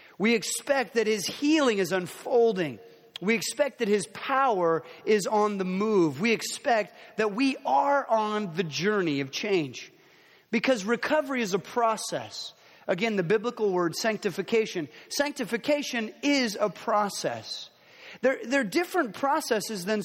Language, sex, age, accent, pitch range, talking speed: English, male, 30-49, American, 185-240 Hz, 135 wpm